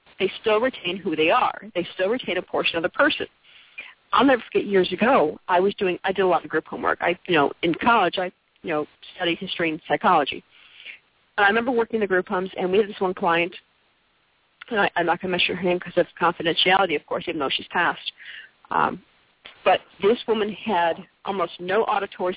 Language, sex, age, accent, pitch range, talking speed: English, female, 50-69, American, 180-225 Hz, 215 wpm